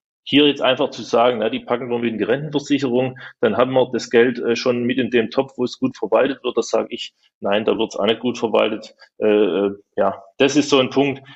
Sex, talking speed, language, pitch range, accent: male, 255 wpm, German, 115-135 Hz, German